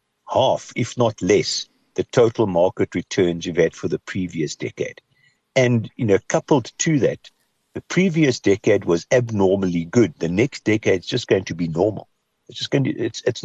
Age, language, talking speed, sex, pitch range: 60-79, English, 185 wpm, male, 90-120 Hz